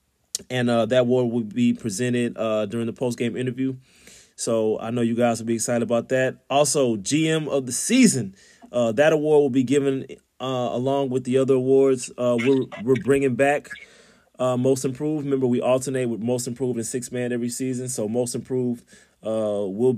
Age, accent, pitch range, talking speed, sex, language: 30-49, American, 115-140 Hz, 190 wpm, male, English